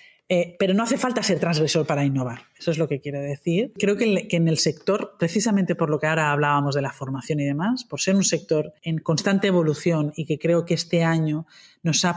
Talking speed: 230 wpm